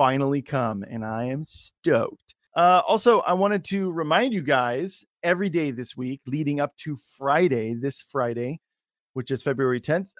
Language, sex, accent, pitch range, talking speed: English, male, American, 135-170 Hz, 165 wpm